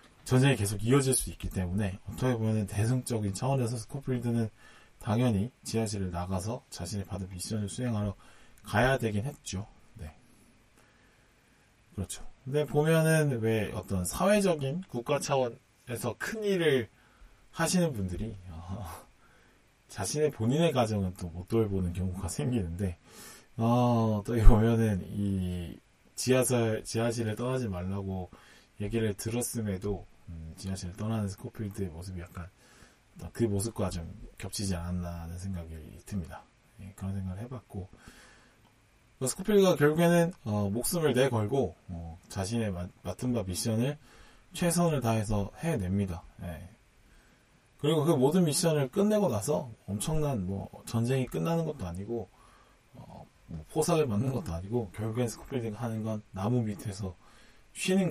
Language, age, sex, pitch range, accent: Korean, 20-39, male, 95-125 Hz, native